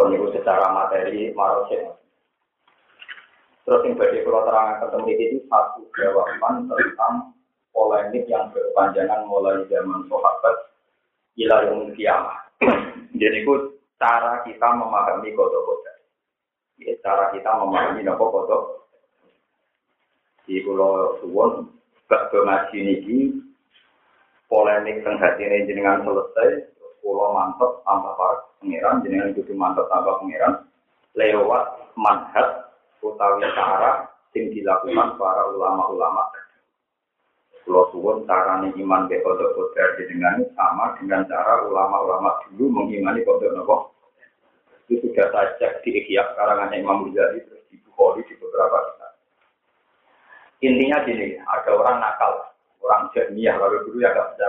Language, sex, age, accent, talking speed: Indonesian, male, 30-49, native, 110 wpm